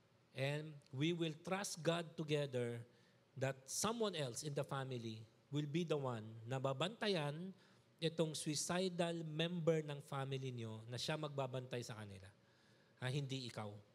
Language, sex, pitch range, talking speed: Filipino, male, 125-175 Hz, 140 wpm